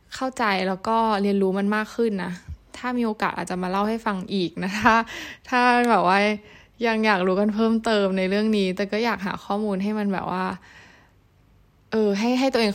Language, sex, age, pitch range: Thai, female, 10-29, 185-225 Hz